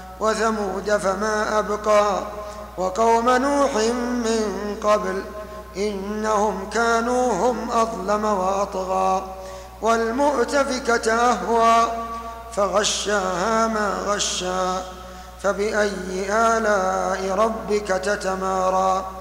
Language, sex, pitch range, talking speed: Arabic, male, 190-225 Hz, 60 wpm